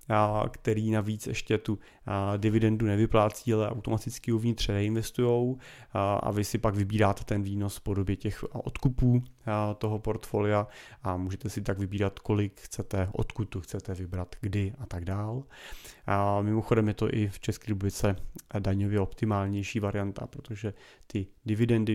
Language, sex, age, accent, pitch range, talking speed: Czech, male, 30-49, native, 100-115 Hz, 145 wpm